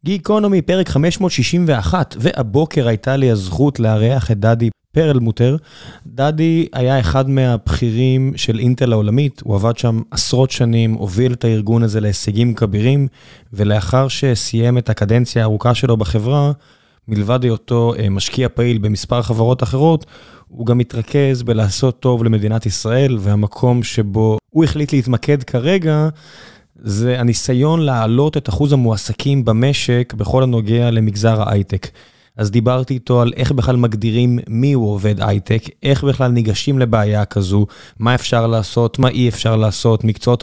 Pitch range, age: 110-140 Hz, 20-39